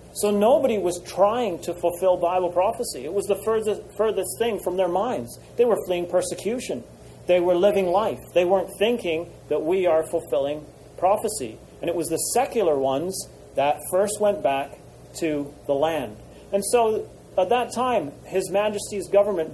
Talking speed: 165 wpm